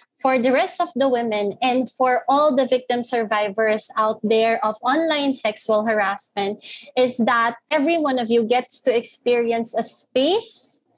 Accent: native